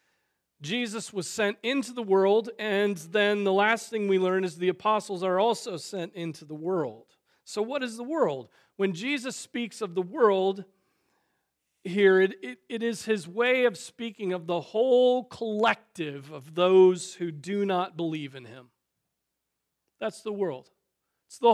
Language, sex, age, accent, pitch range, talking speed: English, male, 40-59, American, 175-225 Hz, 160 wpm